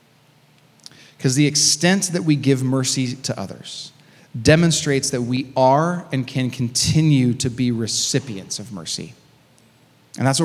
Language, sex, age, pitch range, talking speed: English, male, 30-49, 125-160 Hz, 140 wpm